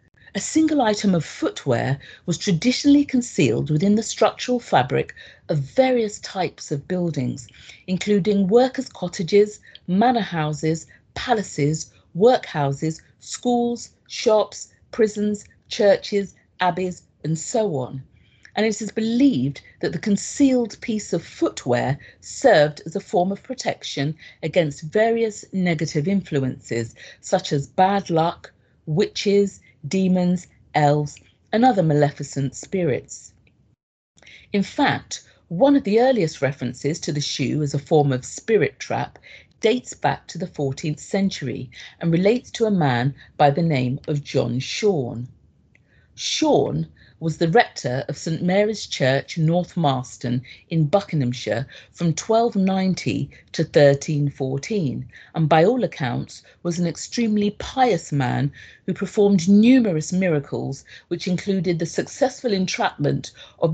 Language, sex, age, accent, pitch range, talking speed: English, female, 50-69, British, 140-205 Hz, 125 wpm